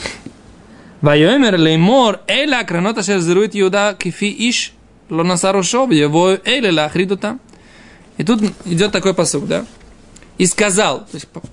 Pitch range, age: 170-220 Hz, 20-39